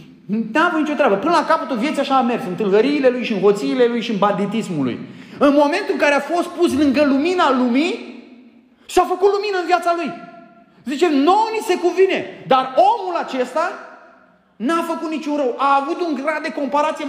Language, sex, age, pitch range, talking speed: Romanian, male, 30-49, 215-305 Hz, 200 wpm